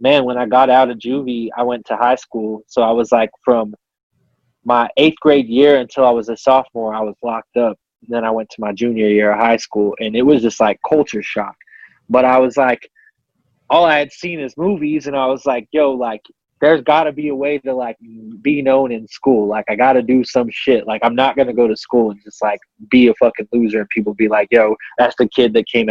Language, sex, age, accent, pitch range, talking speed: English, male, 20-39, American, 110-135 Hz, 240 wpm